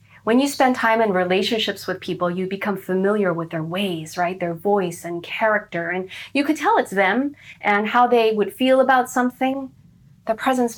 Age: 40-59